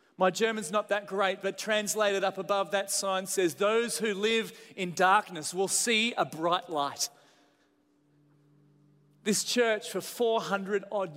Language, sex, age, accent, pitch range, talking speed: English, male, 30-49, Australian, 155-210 Hz, 145 wpm